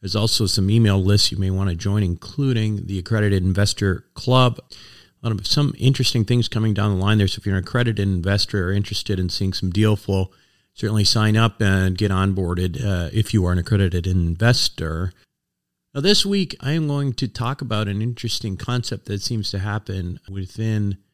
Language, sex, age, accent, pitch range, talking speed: English, male, 40-59, American, 95-120 Hz, 185 wpm